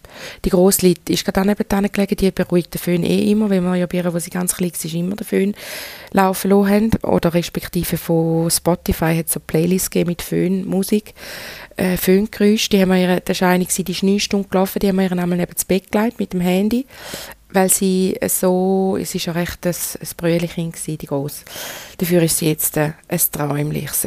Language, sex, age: German, female, 20-39